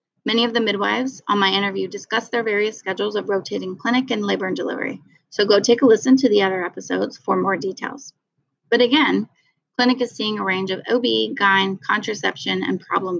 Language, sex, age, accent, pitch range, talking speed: English, female, 20-39, American, 185-235 Hz, 195 wpm